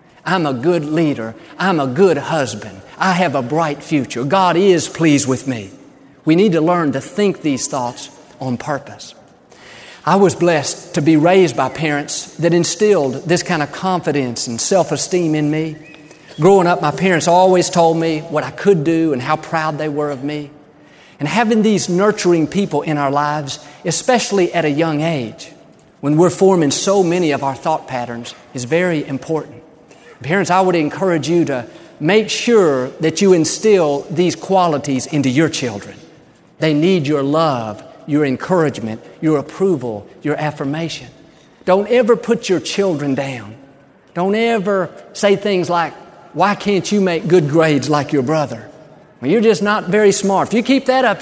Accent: American